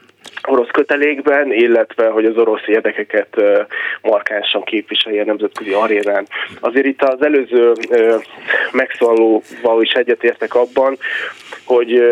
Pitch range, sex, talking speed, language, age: 110-150 Hz, male, 105 wpm, Hungarian, 20-39